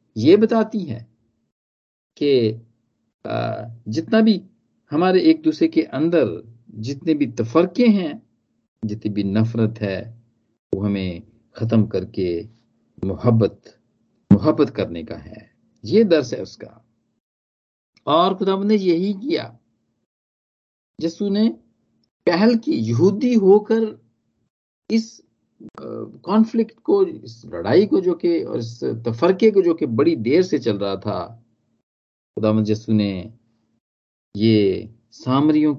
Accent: native